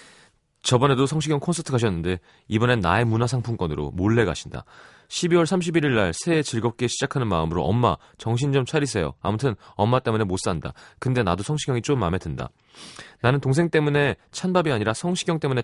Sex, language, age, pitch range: male, Korean, 30-49, 95-140 Hz